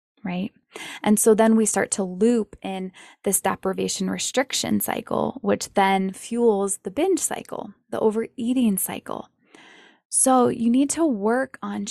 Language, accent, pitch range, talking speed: English, American, 200-255 Hz, 140 wpm